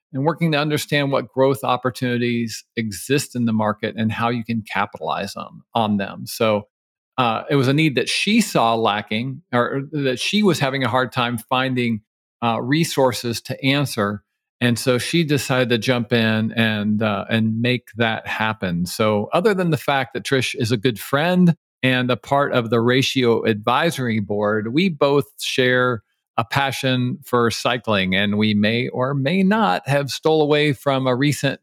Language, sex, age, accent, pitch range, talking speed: English, male, 50-69, American, 115-145 Hz, 175 wpm